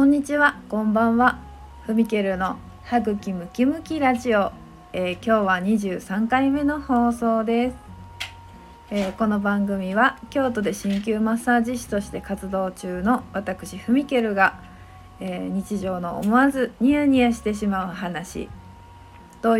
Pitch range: 190-240 Hz